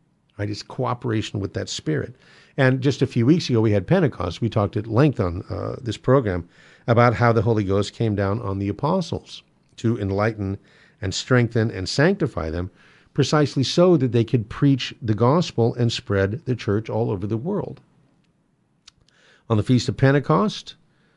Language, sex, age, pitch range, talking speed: English, male, 50-69, 105-135 Hz, 175 wpm